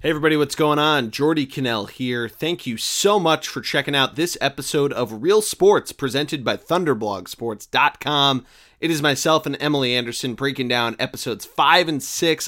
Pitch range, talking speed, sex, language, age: 120-155 Hz, 170 wpm, male, English, 30-49